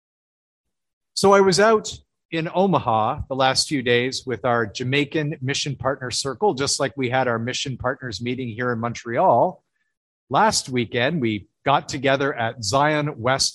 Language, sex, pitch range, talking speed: English, male, 120-160 Hz, 155 wpm